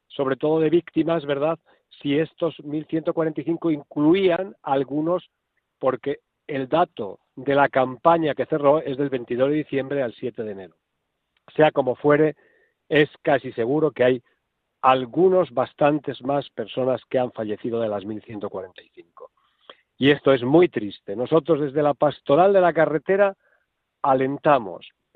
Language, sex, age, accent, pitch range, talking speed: Spanish, male, 50-69, Spanish, 130-160 Hz, 140 wpm